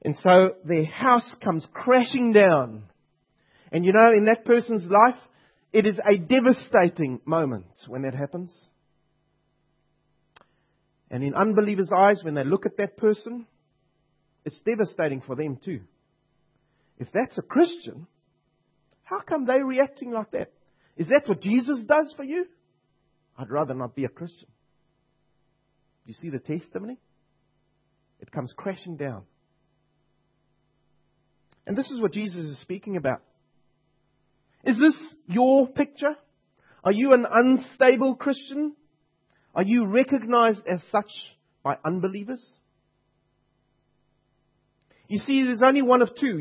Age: 40-59